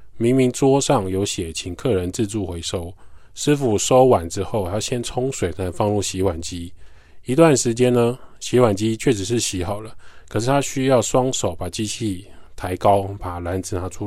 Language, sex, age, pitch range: Chinese, male, 20-39, 95-120 Hz